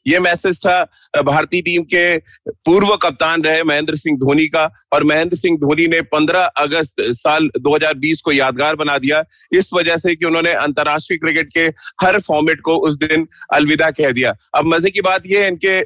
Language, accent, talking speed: Hindi, native, 180 wpm